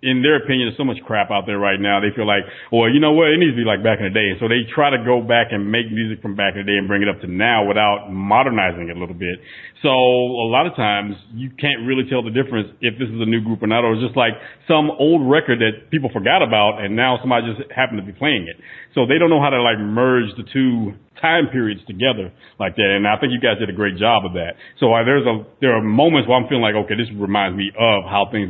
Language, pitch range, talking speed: English, 105-135 Hz, 290 wpm